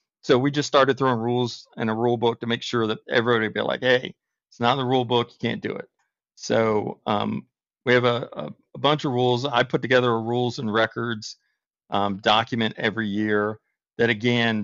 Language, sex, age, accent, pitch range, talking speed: English, male, 40-59, American, 105-120 Hz, 210 wpm